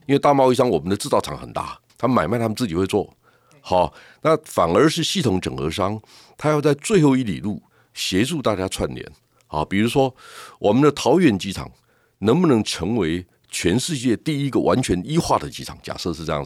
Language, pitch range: Chinese, 90-145 Hz